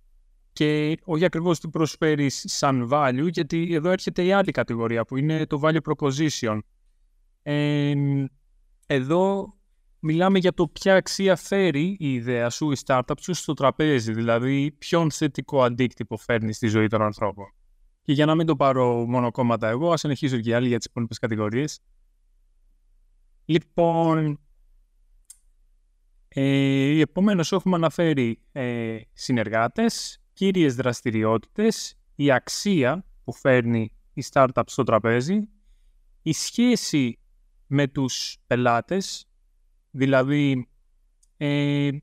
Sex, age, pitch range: male, 20-39, 120-160 Hz